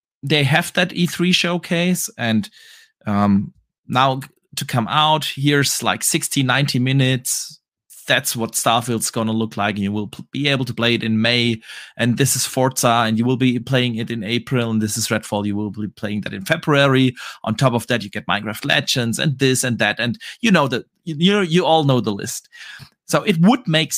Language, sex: English, male